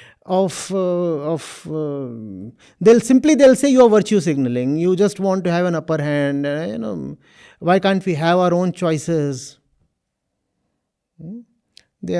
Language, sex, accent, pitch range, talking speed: English, male, Indian, 160-235 Hz, 150 wpm